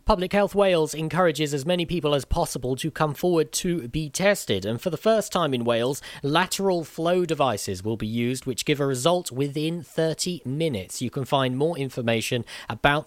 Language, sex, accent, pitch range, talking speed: English, male, British, 115-155 Hz, 190 wpm